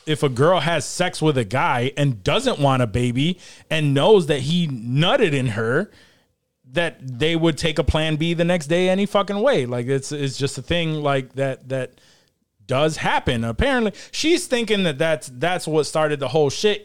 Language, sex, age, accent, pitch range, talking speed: English, male, 20-39, American, 135-165 Hz, 195 wpm